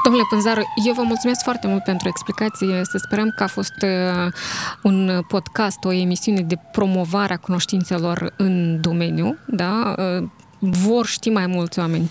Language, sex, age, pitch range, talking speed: Romanian, female, 20-39, 180-225 Hz, 150 wpm